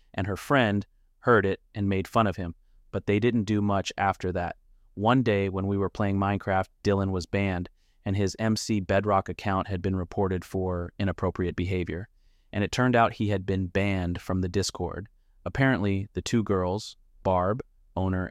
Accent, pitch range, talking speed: American, 85-100 Hz, 180 wpm